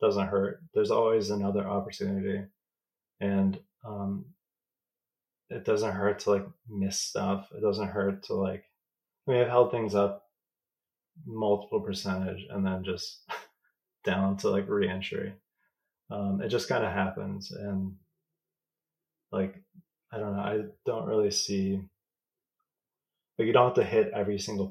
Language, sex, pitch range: English, male, 100-120 Hz